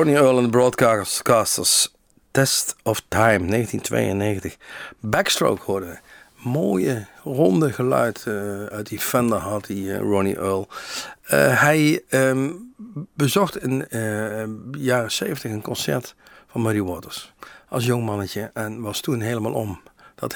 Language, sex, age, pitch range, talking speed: Dutch, male, 50-69, 105-135 Hz, 135 wpm